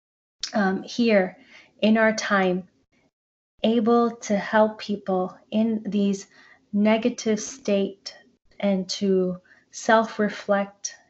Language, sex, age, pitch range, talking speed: English, female, 20-39, 195-220 Hz, 85 wpm